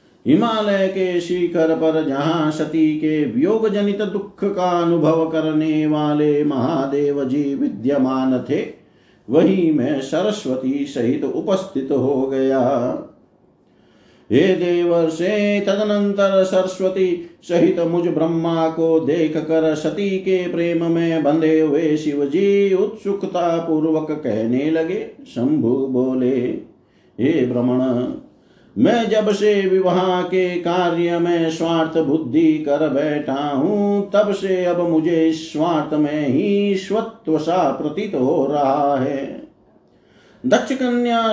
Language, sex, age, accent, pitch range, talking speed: Hindi, male, 50-69, native, 150-195 Hz, 115 wpm